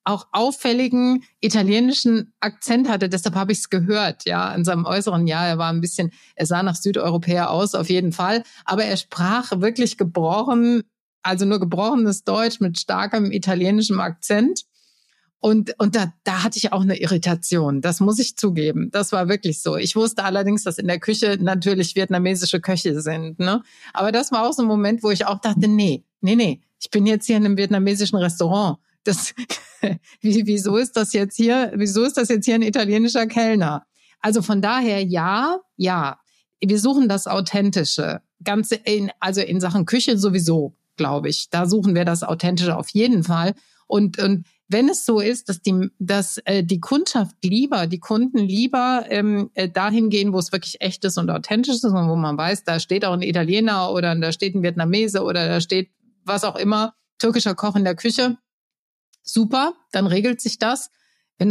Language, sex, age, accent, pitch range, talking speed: German, female, 50-69, German, 180-220 Hz, 185 wpm